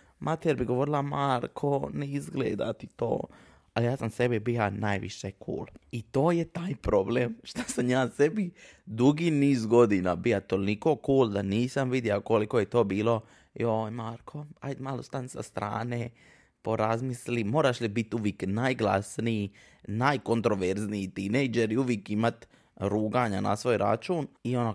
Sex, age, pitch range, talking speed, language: male, 20-39, 100-125 Hz, 150 wpm, Croatian